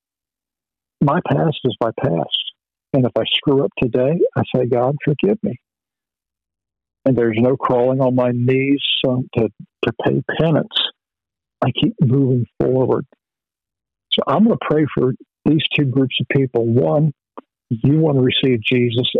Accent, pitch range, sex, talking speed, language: American, 115-140 Hz, male, 155 wpm, English